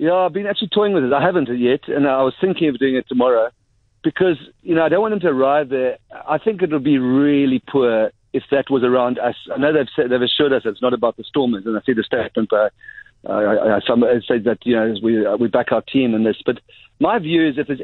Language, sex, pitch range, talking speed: English, male, 120-150 Hz, 265 wpm